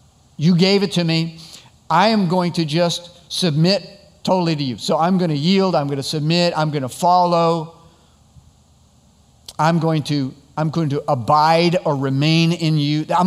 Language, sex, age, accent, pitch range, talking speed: English, male, 50-69, American, 130-165 Hz, 165 wpm